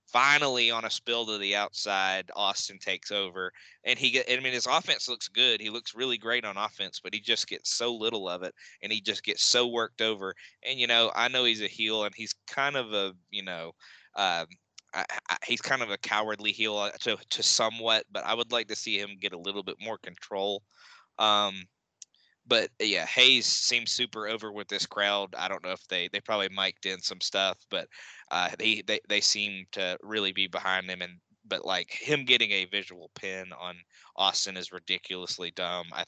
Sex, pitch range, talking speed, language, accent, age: male, 95-115 Hz, 205 wpm, English, American, 20-39